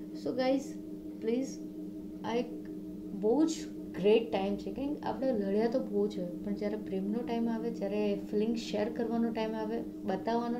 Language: Gujarati